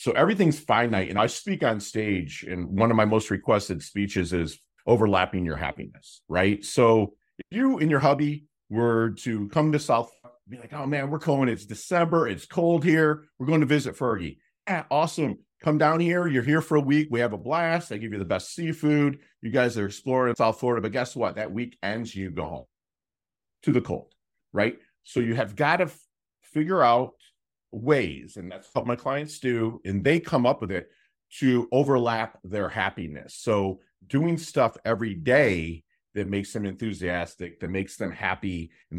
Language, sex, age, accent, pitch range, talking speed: English, male, 50-69, American, 100-140 Hz, 190 wpm